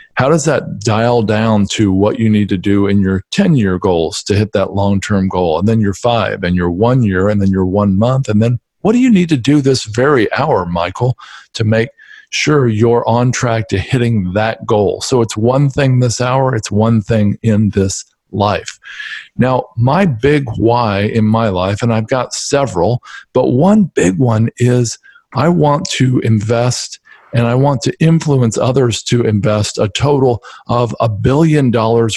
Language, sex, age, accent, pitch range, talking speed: English, male, 50-69, American, 110-145 Hz, 190 wpm